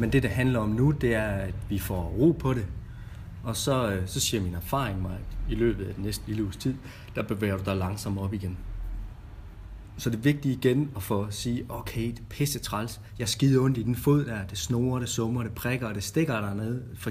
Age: 30-49